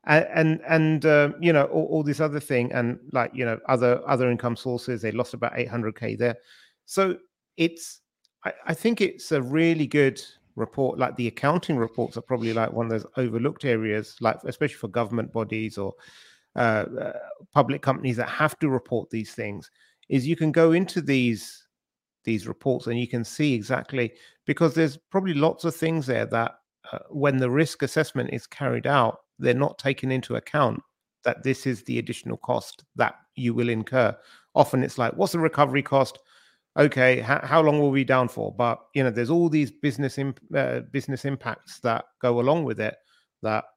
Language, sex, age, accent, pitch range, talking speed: English, male, 30-49, British, 115-155 Hz, 190 wpm